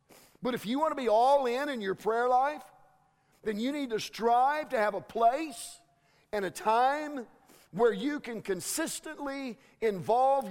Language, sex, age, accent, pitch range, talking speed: English, male, 50-69, American, 145-195 Hz, 165 wpm